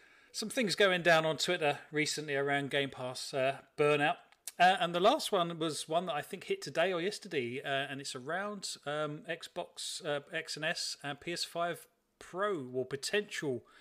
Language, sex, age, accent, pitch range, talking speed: English, male, 40-59, British, 140-185 Hz, 180 wpm